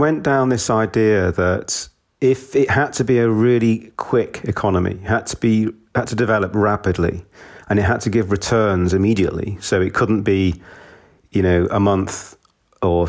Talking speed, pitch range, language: 170 wpm, 90-105 Hz, English